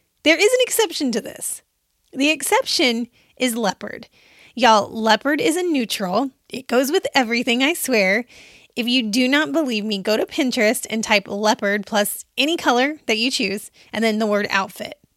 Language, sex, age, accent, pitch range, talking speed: English, female, 20-39, American, 215-285 Hz, 175 wpm